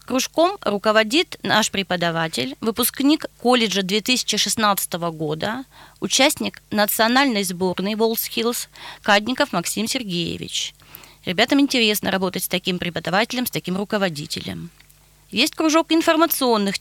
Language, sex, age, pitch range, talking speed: Russian, female, 20-39, 185-245 Hz, 95 wpm